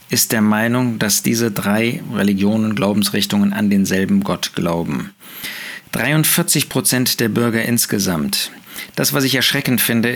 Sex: male